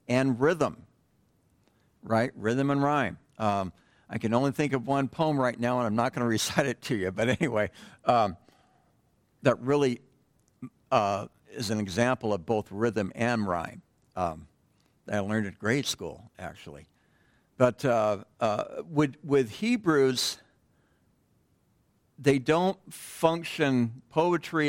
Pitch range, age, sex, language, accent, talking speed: 105-140 Hz, 60-79, male, English, American, 140 wpm